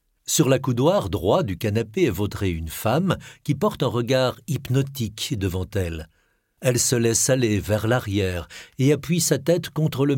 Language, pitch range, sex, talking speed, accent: French, 105-140 Hz, male, 170 wpm, French